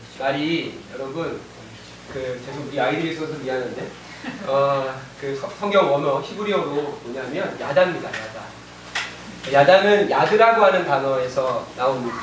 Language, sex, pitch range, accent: Korean, male, 140-200 Hz, native